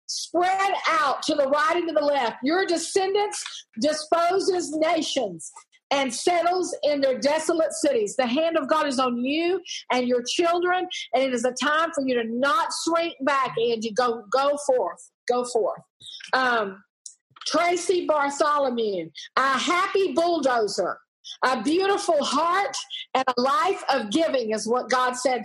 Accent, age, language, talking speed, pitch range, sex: American, 50-69, English, 155 wpm, 260-345 Hz, female